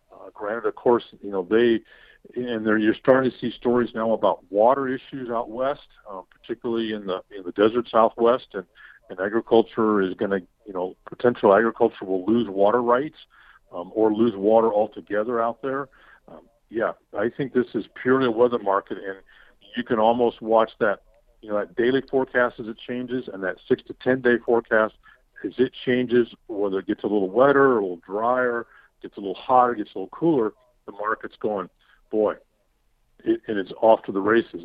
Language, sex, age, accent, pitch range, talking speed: English, male, 50-69, American, 105-125 Hz, 190 wpm